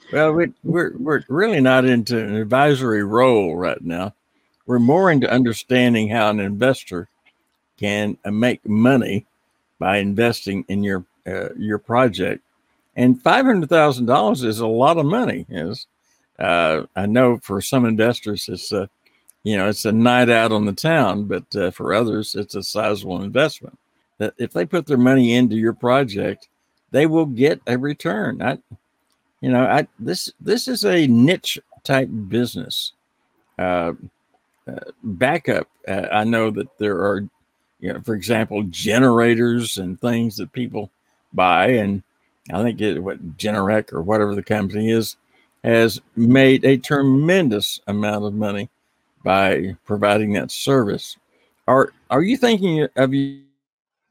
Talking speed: 150 wpm